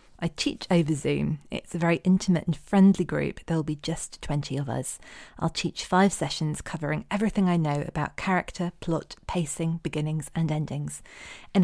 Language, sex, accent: English, female, British